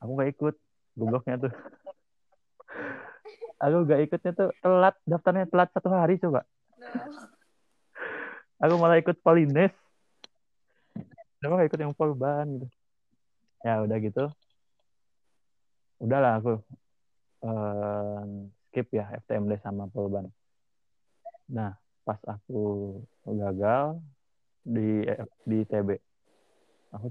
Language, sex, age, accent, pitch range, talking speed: Indonesian, male, 30-49, native, 105-135 Hz, 95 wpm